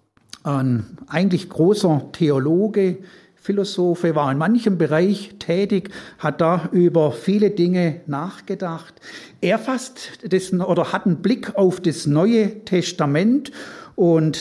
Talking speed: 115 wpm